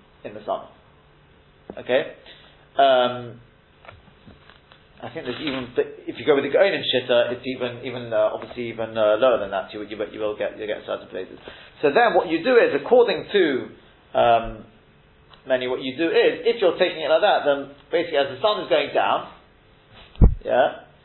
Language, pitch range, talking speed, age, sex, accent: English, 125-170 Hz, 185 wpm, 30-49, male, British